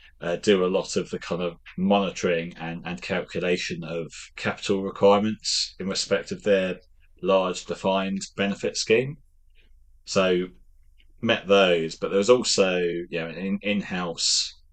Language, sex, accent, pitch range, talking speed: English, male, British, 80-100 Hz, 140 wpm